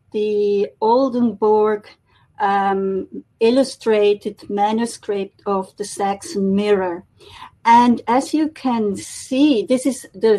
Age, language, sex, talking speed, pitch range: 50-69, English, female, 100 wpm, 200-250 Hz